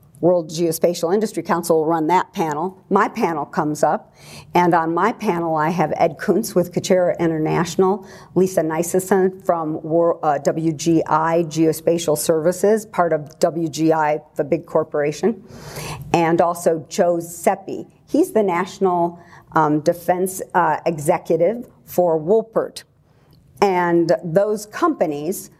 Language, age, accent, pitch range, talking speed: English, 50-69, American, 160-185 Hz, 120 wpm